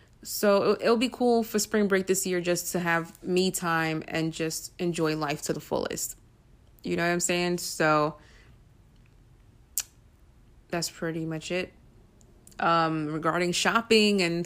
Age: 20-39